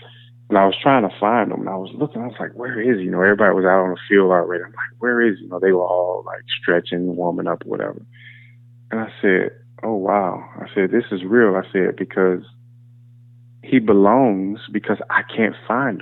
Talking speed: 225 wpm